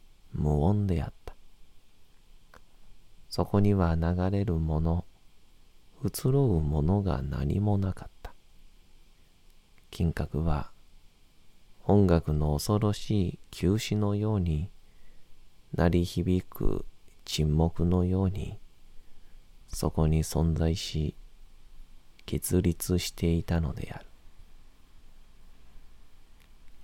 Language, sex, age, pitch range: Japanese, male, 40-59, 75-95 Hz